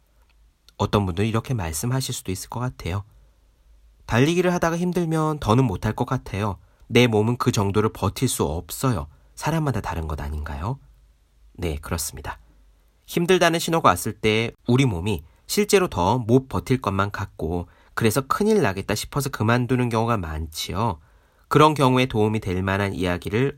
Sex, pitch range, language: male, 85-135 Hz, Korean